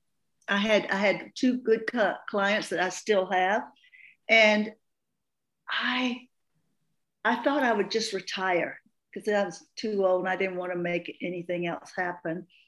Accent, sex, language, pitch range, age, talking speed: American, female, English, 190-235 Hz, 60-79, 160 wpm